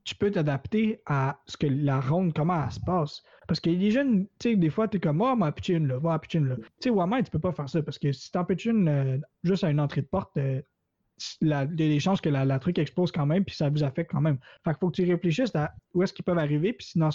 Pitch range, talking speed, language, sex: 145-175 Hz, 300 wpm, French, male